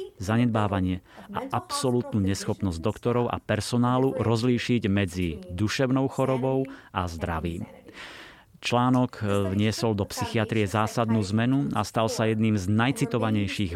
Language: Slovak